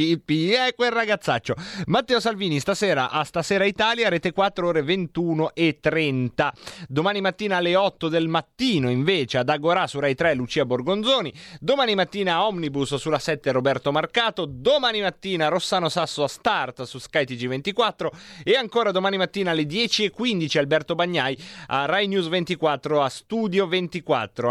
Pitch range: 145-200 Hz